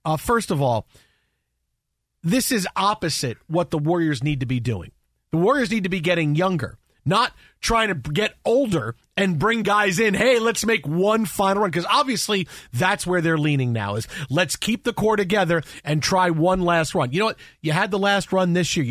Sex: male